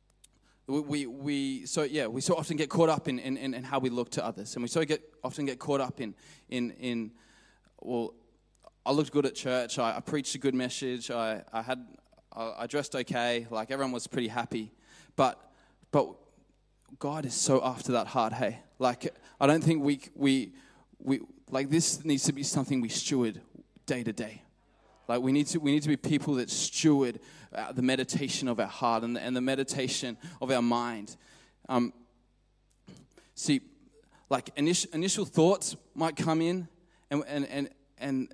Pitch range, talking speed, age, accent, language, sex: 130-155 Hz, 185 wpm, 20-39, Australian, English, male